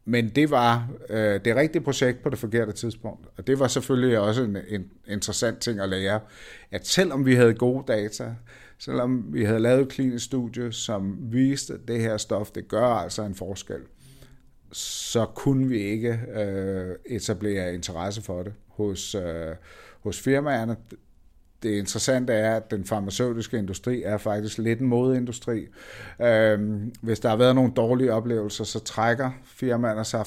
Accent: native